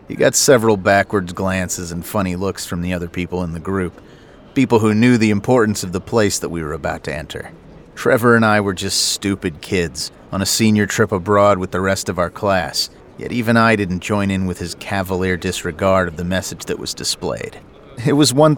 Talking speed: 215 wpm